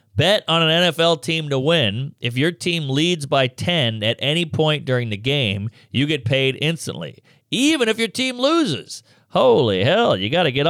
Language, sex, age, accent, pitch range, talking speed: English, male, 40-59, American, 120-160 Hz, 190 wpm